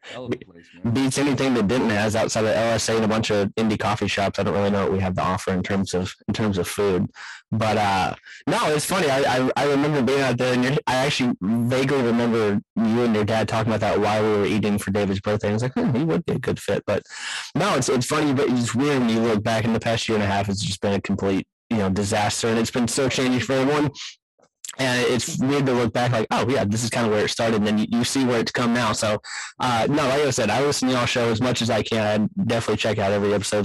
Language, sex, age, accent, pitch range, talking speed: English, male, 20-39, American, 105-130 Hz, 275 wpm